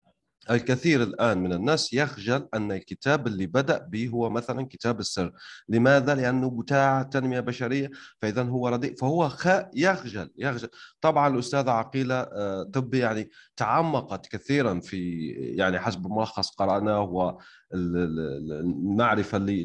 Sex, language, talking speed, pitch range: male, Arabic, 125 wpm, 100-140 Hz